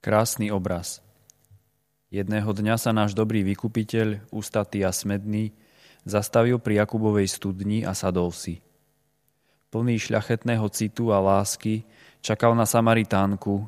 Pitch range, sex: 100-115 Hz, male